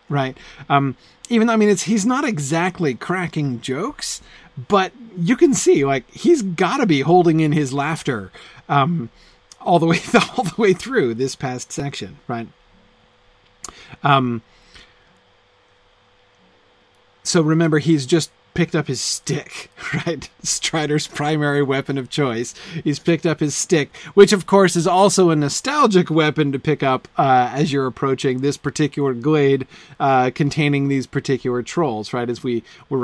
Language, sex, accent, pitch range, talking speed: English, male, American, 125-165 Hz, 155 wpm